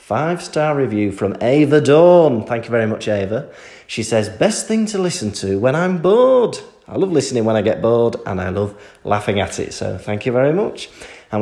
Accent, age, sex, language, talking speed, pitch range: British, 30-49, male, English, 205 wpm, 105-155 Hz